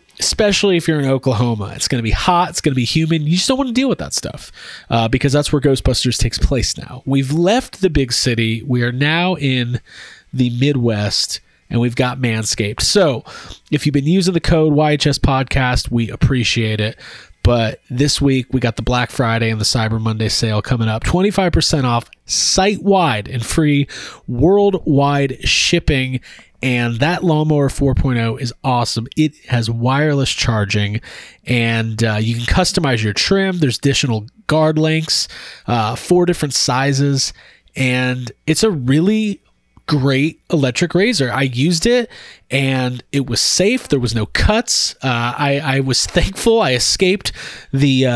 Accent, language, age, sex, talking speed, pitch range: American, English, 30-49, male, 165 wpm, 120-155 Hz